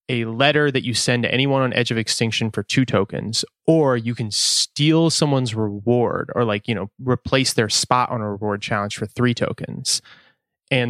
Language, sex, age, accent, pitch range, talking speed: English, male, 20-39, American, 110-130 Hz, 195 wpm